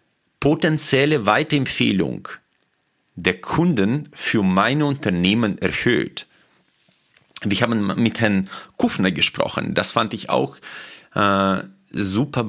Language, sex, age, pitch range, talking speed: German, male, 40-59, 100-145 Hz, 100 wpm